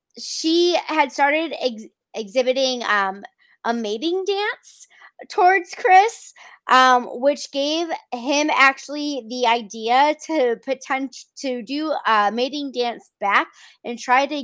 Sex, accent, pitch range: female, American, 240-295 Hz